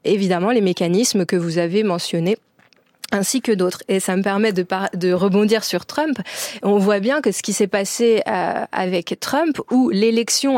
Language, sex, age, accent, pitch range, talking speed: French, female, 30-49, French, 190-235 Hz, 185 wpm